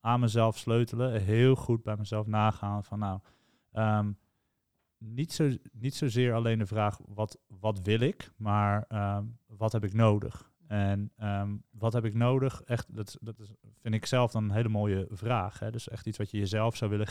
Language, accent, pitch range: Dutch, Dutch, 105-120 Hz